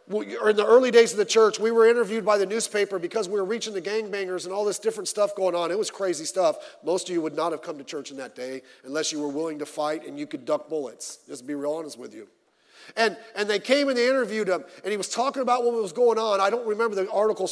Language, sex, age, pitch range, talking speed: English, male, 40-59, 165-255 Hz, 280 wpm